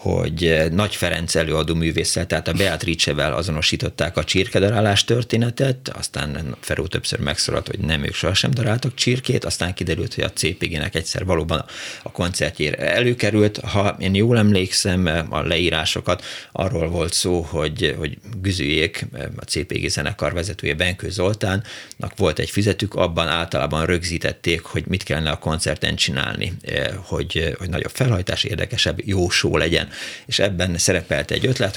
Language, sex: Hungarian, male